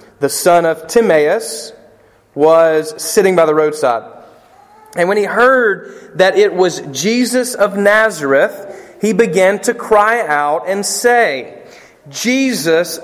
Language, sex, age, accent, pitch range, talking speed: English, male, 30-49, American, 155-240 Hz, 125 wpm